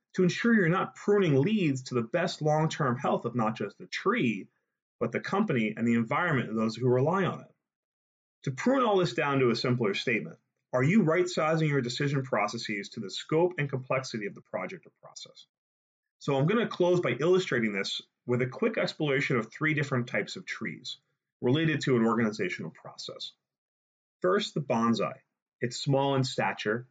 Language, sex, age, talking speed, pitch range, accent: English, male, 30-49, 185 wpm, 125-175 Hz, American